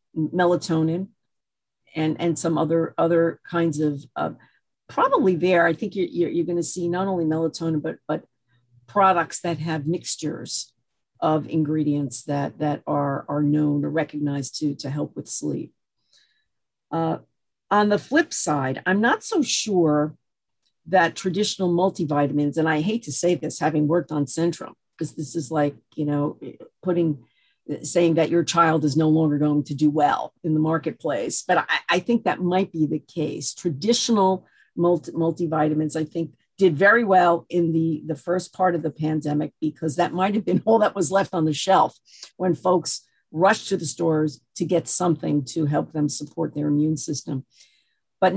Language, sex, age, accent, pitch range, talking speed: English, female, 50-69, American, 150-180 Hz, 170 wpm